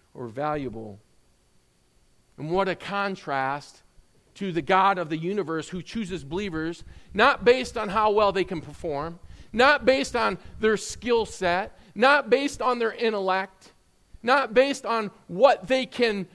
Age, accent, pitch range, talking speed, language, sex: 40-59, American, 130-205 Hz, 145 wpm, English, male